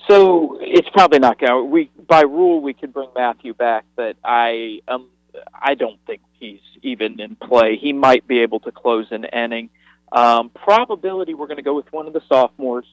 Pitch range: 120-150 Hz